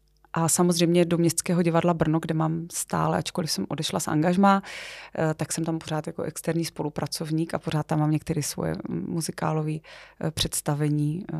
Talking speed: 155 wpm